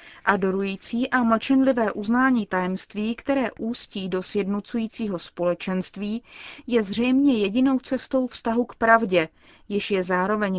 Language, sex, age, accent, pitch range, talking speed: Czech, female, 30-49, native, 195-235 Hz, 115 wpm